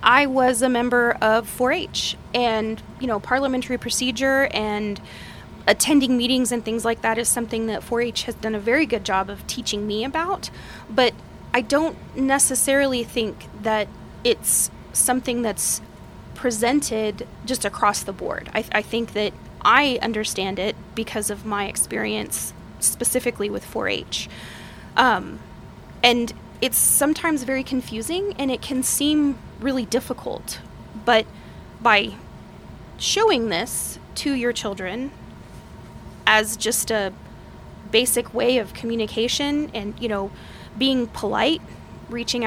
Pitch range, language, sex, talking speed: 220-265 Hz, English, female, 130 wpm